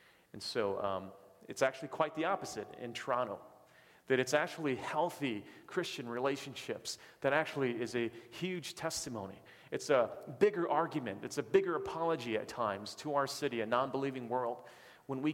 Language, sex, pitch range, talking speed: English, male, 115-150 Hz, 155 wpm